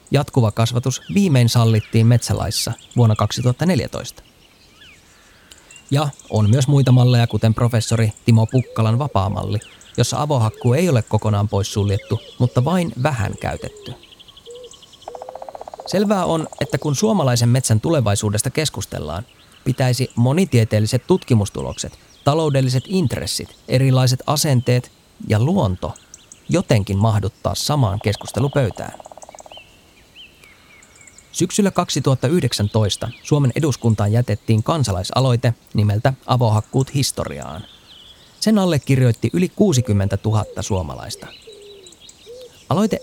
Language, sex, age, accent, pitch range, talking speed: Finnish, male, 20-39, native, 105-135 Hz, 90 wpm